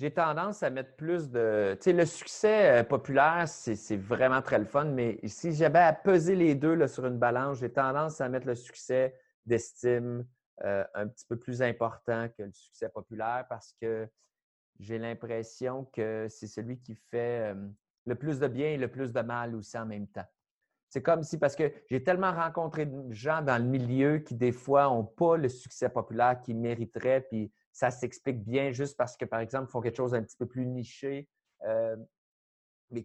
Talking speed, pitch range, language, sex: 200 wpm, 115-145 Hz, French, male